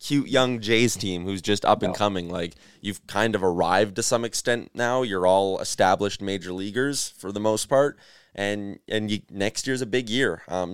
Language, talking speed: English, 200 wpm